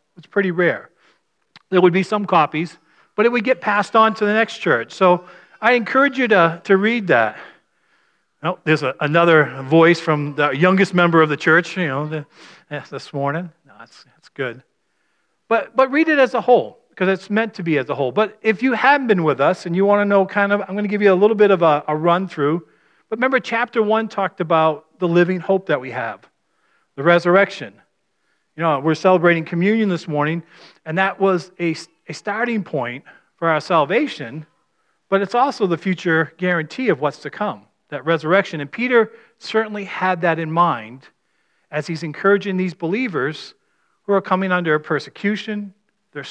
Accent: American